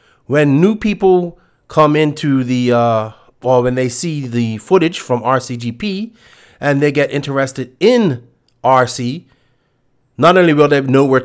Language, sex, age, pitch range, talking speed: English, male, 30-49, 120-150 Hz, 145 wpm